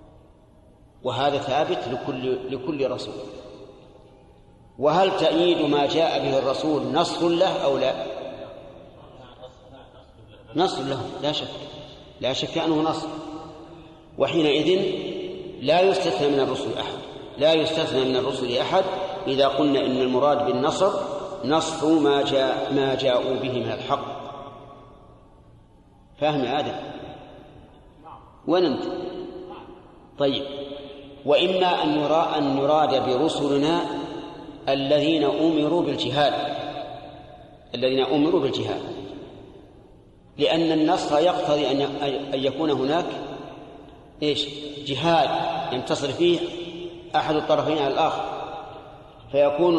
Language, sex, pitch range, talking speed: Arabic, male, 135-160 Hz, 90 wpm